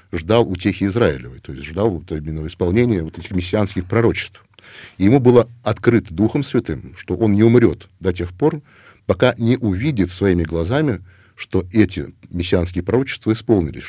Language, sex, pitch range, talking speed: Russian, male, 85-110 Hz, 150 wpm